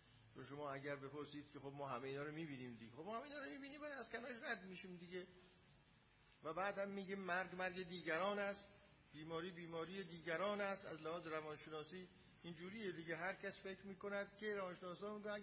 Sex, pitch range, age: male, 145-205 Hz, 50-69